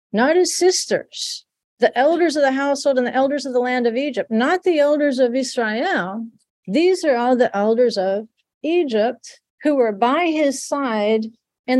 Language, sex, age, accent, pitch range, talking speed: English, female, 50-69, American, 220-265 Hz, 175 wpm